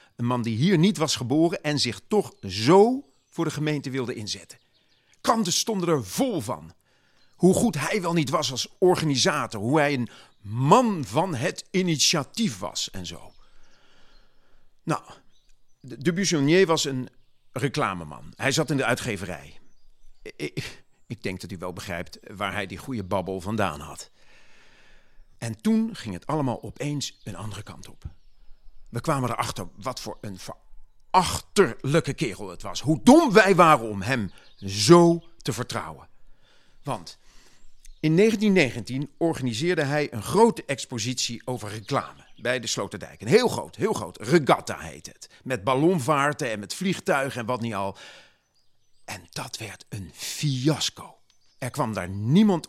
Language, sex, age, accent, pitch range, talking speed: Dutch, male, 40-59, Dutch, 105-165 Hz, 150 wpm